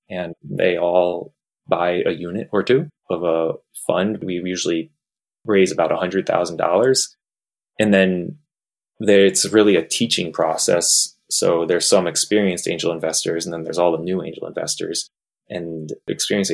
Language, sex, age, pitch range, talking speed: English, male, 20-39, 85-105 Hz, 140 wpm